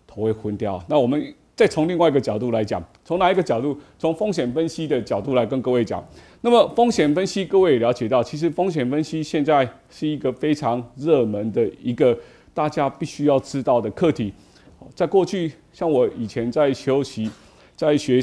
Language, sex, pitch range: Chinese, male, 120-160 Hz